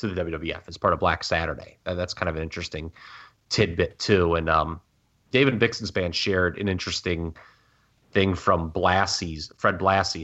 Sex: male